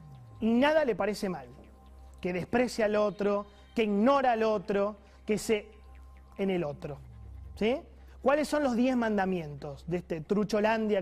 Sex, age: male, 20-39